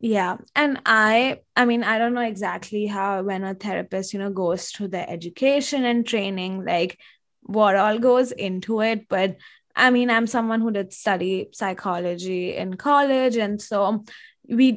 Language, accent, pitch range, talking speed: English, Indian, 185-220 Hz, 165 wpm